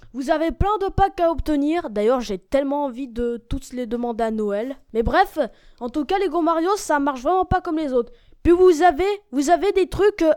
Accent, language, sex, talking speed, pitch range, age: French, French, female, 220 wpm, 260-335 Hz, 20-39